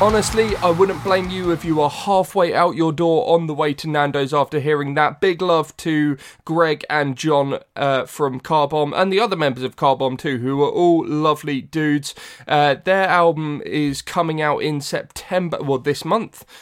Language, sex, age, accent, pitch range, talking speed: English, male, 20-39, British, 145-170 Hz, 190 wpm